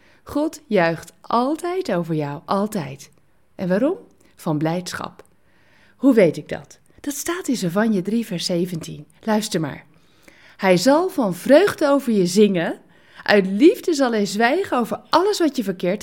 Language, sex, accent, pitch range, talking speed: Dutch, female, Dutch, 185-300 Hz, 150 wpm